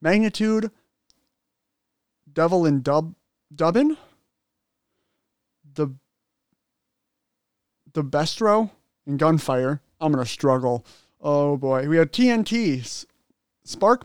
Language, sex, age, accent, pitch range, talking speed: English, male, 30-49, American, 150-205 Hz, 90 wpm